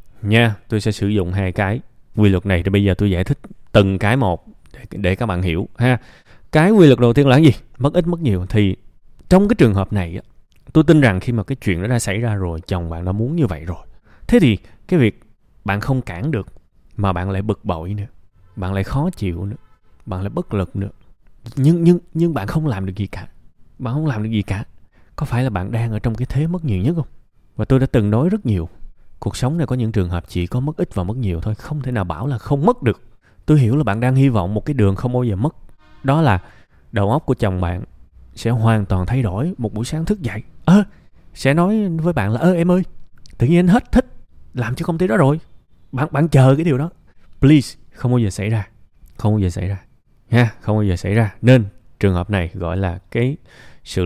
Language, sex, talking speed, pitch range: Vietnamese, male, 250 wpm, 95-135 Hz